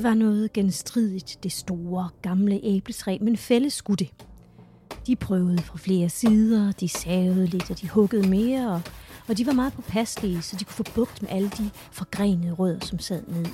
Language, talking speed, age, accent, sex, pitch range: Danish, 180 wpm, 30-49, native, female, 185-225 Hz